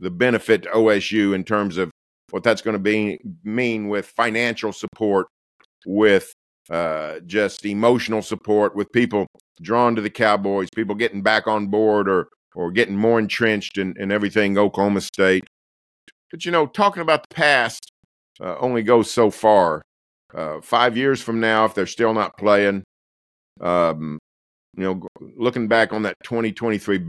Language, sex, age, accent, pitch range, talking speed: English, male, 50-69, American, 100-125 Hz, 160 wpm